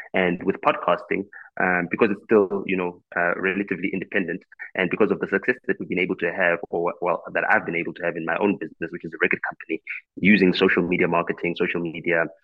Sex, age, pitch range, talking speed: male, 20-39, 85-95 Hz, 220 wpm